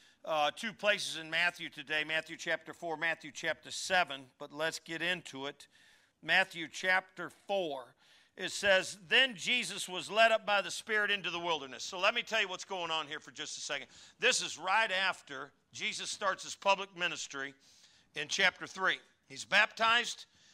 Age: 50-69